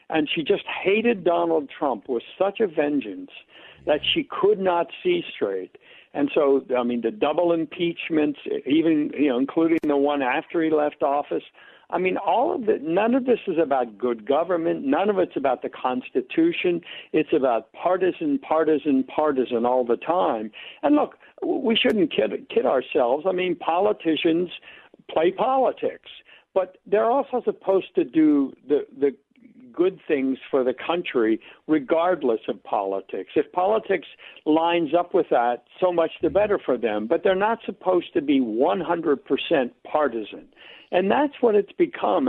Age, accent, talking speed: 60-79, American, 160 wpm